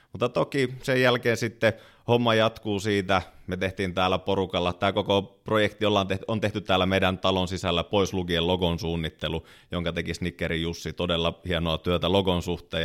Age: 30-49